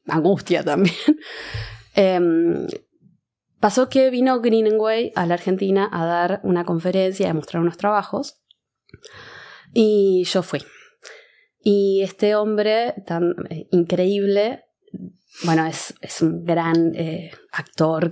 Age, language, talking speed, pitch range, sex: 20-39, Spanish, 115 wpm, 170-225 Hz, female